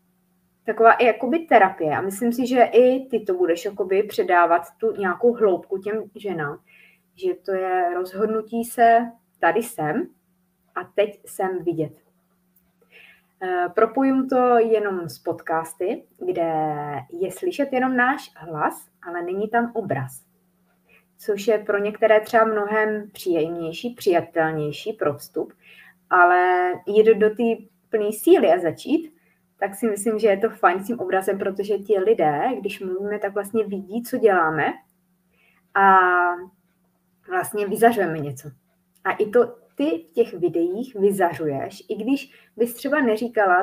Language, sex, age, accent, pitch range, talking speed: Czech, female, 20-39, native, 180-225 Hz, 135 wpm